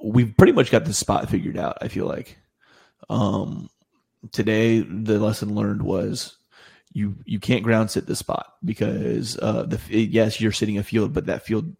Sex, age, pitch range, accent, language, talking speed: male, 30-49, 105-115 Hz, American, English, 185 wpm